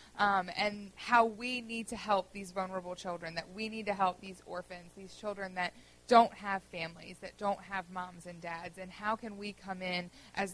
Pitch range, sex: 195-235 Hz, female